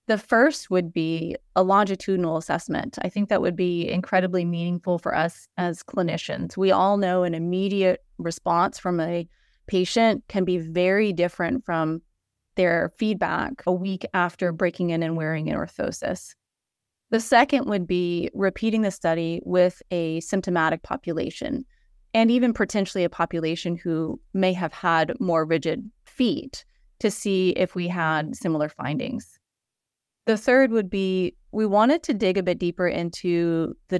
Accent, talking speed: American, 150 wpm